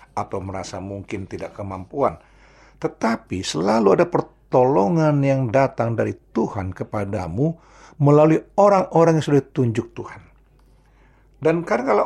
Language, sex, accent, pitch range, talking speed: Indonesian, male, native, 100-140 Hz, 110 wpm